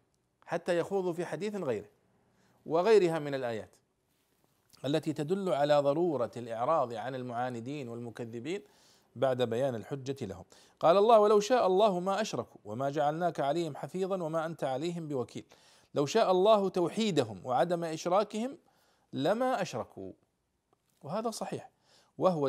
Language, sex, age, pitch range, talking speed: Arabic, male, 40-59, 120-165 Hz, 125 wpm